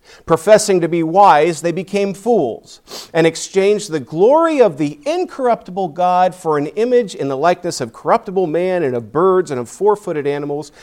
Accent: American